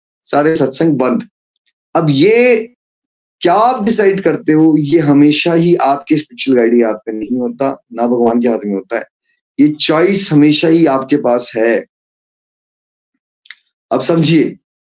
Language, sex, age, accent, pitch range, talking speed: Hindi, male, 20-39, native, 145-190 Hz, 145 wpm